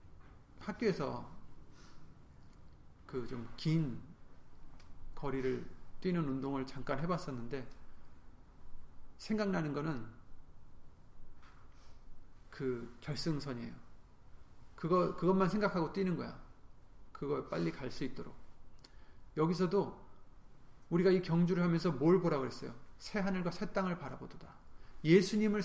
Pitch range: 120-170 Hz